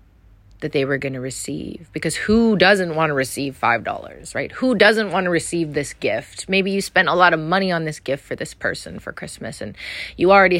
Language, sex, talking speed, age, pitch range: English, female, 220 wpm, 30-49, 100-165 Hz